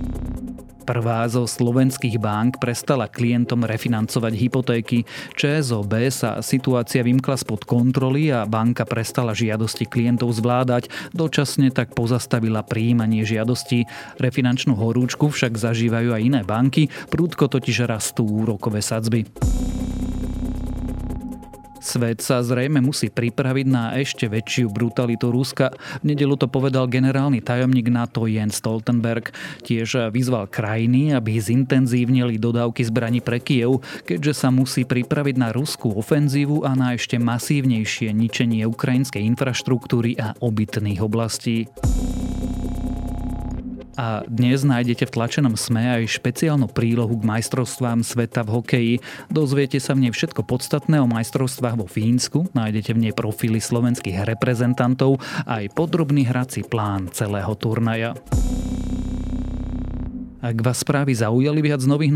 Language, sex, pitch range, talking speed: Slovak, male, 115-130 Hz, 120 wpm